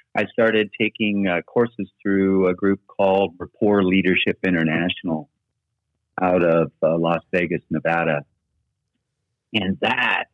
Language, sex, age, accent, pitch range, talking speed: English, male, 50-69, American, 95-120 Hz, 115 wpm